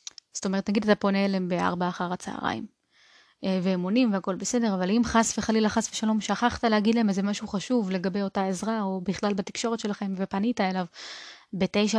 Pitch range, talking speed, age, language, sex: 195-225 Hz, 170 wpm, 20-39, Hebrew, female